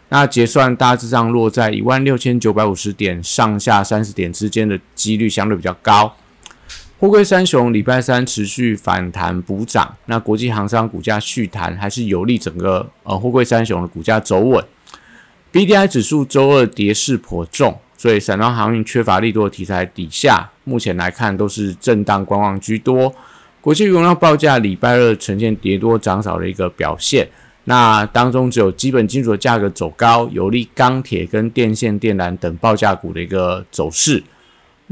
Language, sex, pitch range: Chinese, male, 100-120 Hz